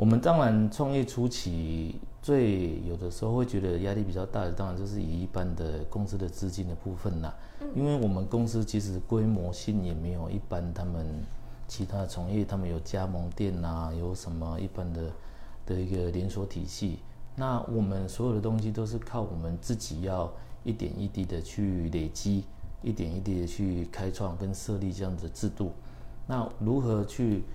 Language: English